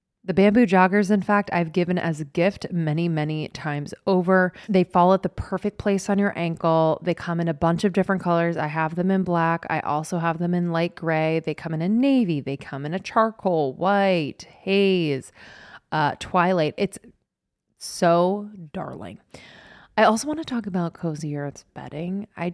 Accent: American